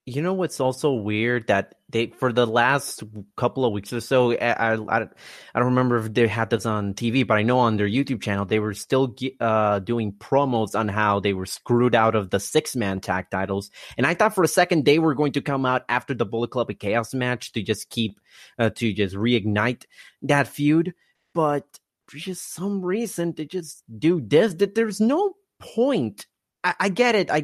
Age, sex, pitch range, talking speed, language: 30-49, male, 115-145 Hz, 210 wpm, English